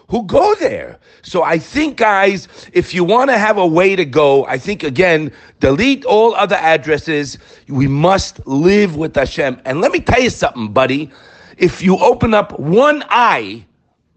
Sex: male